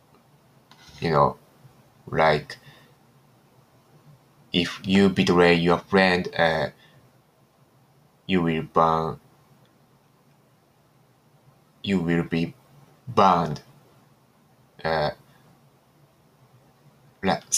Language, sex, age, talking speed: English, male, 20-39, 60 wpm